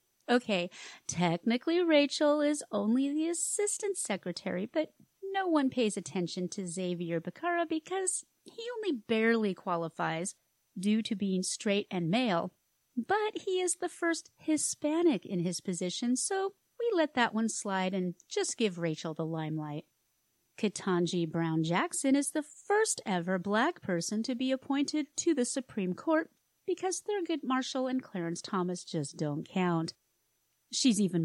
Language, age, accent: English, 30-49, American